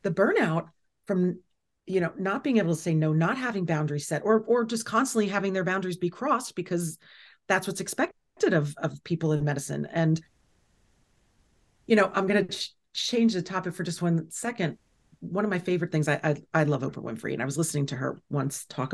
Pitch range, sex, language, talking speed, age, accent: 160-225 Hz, female, English, 210 wpm, 40-59, American